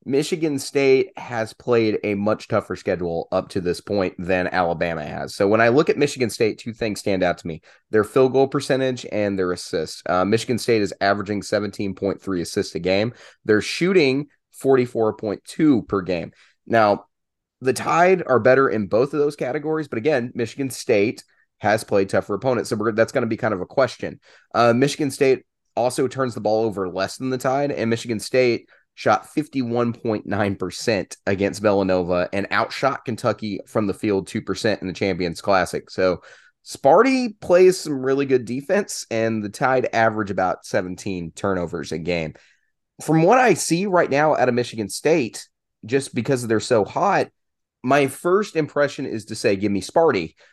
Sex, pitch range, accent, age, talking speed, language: male, 100-135 Hz, American, 30-49, 175 wpm, English